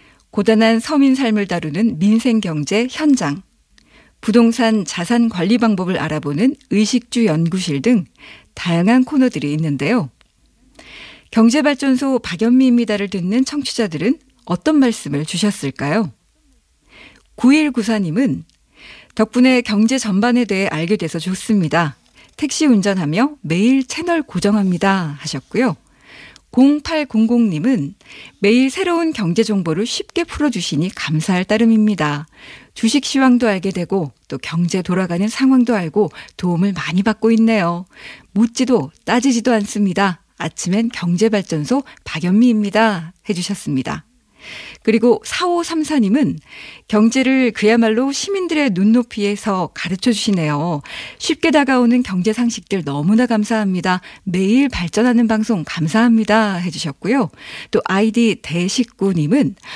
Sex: female